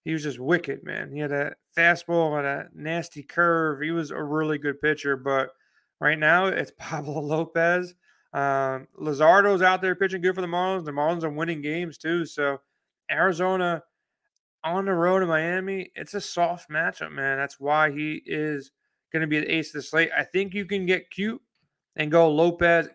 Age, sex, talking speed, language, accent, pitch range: 30-49, male, 190 wpm, English, American, 155-180 Hz